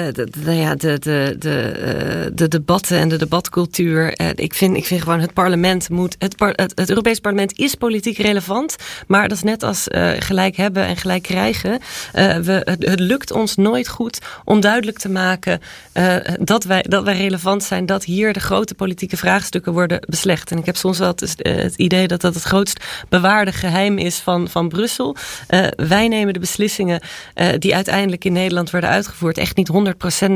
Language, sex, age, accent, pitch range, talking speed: Dutch, female, 30-49, Dutch, 175-200 Hz, 195 wpm